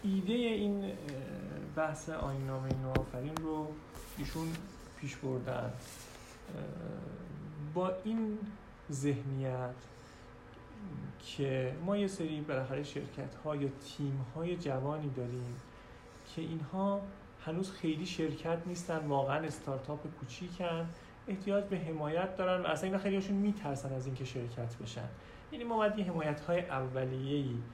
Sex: male